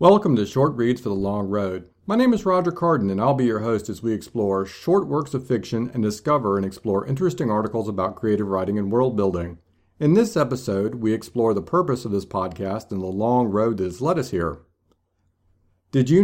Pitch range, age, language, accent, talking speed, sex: 100-150 Hz, 50-69, English, American, 215 wpm, male